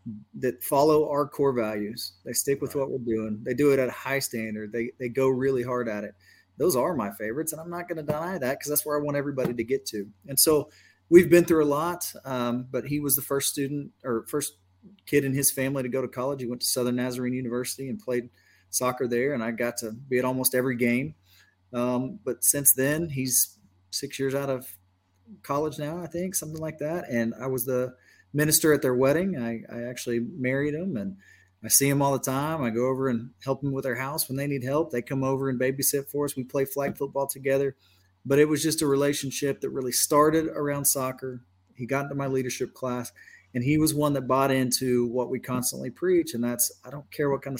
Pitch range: 120-140 Hz